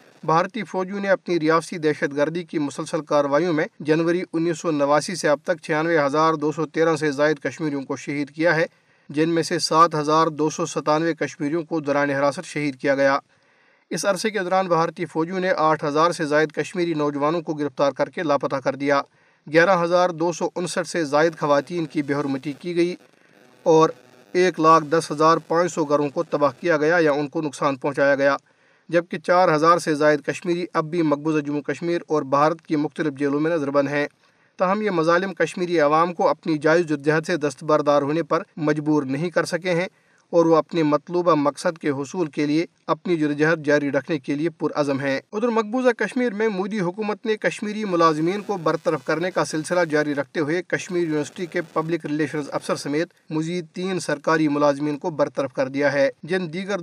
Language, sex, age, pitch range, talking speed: Urdu, male, 40-59, 150-175 Hz, 175 wpm